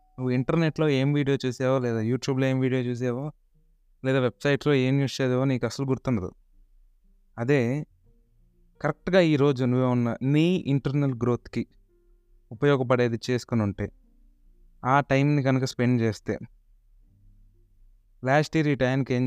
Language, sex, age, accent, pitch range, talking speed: Telugu, male, 20-39, native, 105-145 Hz, 120 wpm